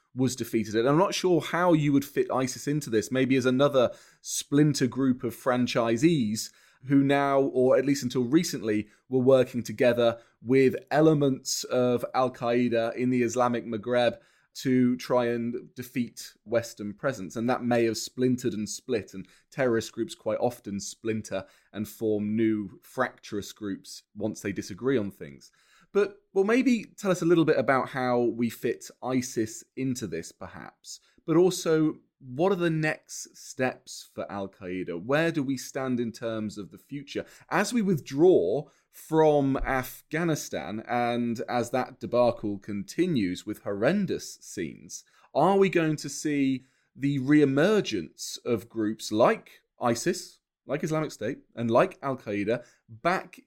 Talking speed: 150 wpm